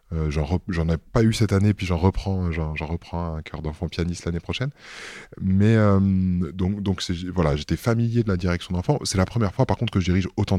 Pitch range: 85-105 Hz